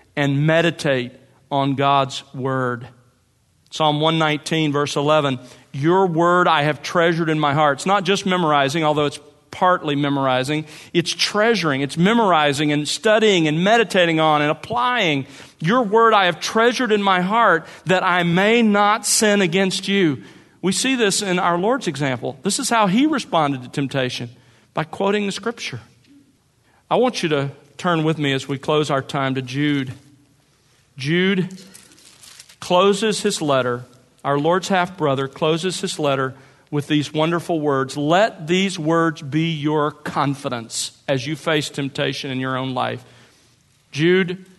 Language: English